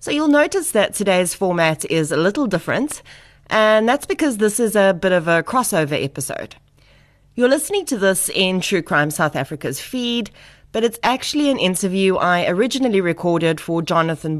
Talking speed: 170 wpm